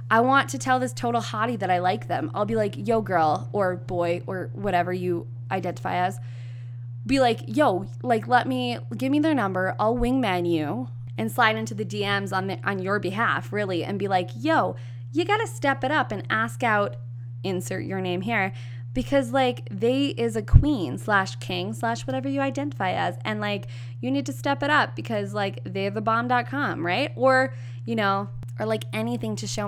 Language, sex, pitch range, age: English, female, 115-175 Hz, 20-39